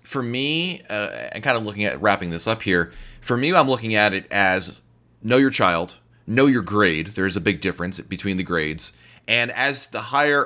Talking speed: 210 wpm